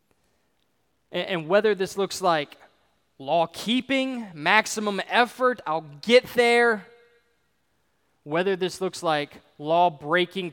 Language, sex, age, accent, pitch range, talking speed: English, male, 20-39, American, 160-220 Hz, 90 wpm